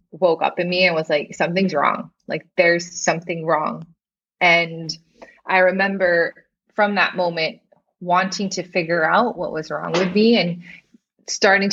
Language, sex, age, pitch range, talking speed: English, female, 20-39, 165-195 Hz, 155 wpm